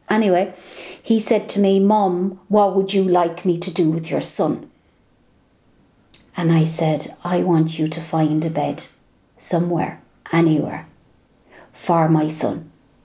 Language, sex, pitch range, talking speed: English, female, 160-195 Hz, 145 wpm